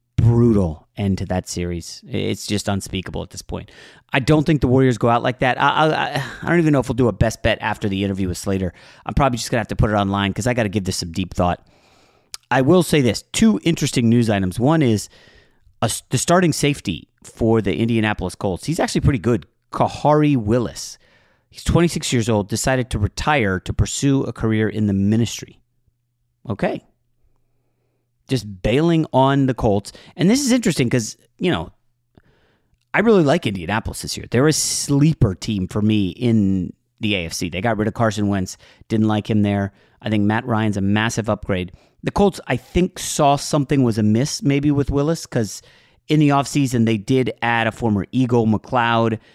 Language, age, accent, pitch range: English, 30-49, American, 105-135 Hz